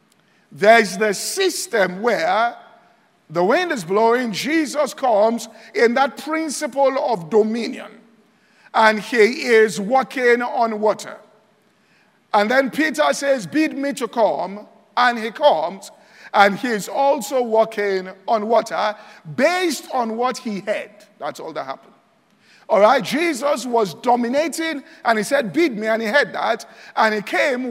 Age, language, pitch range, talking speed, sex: 50-69, English, 215-285 Hz, 140 wpm, male